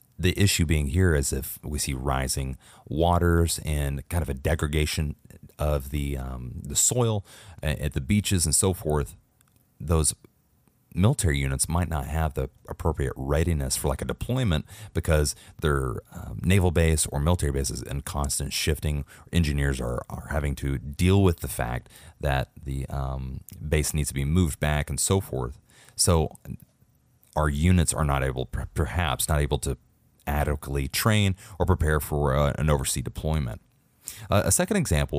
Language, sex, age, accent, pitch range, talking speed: English, male, 30-49, American, 70-90 Hz, 160 wpm